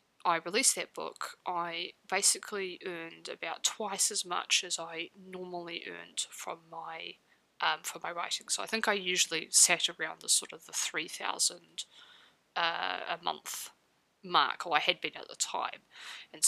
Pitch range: 175-215 Hz